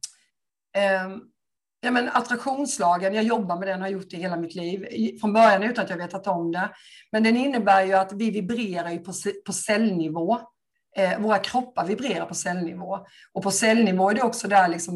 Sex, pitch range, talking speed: female, 180-220 Hz, 175 wpm